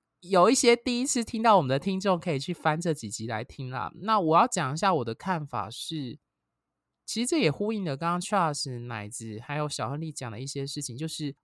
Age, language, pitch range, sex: 20-39, Chinese, 135-195 Hz, male